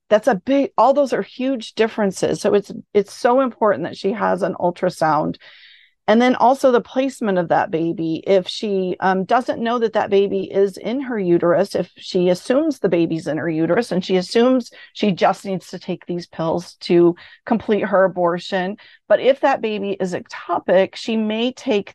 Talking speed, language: 190 wpm, English